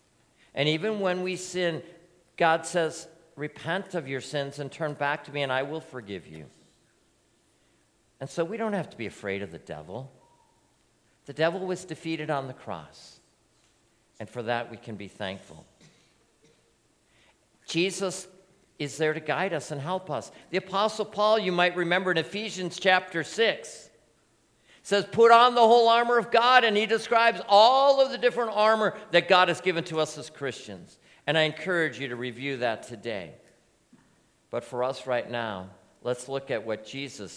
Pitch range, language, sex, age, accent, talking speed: 120-185 Hz, English, male, 50-69, American, 170 wpm